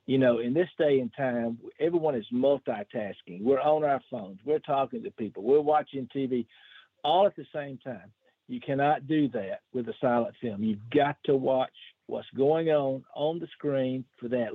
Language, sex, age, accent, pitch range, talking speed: English, male, 50-69, American, 125-155 Hz, 190 wpm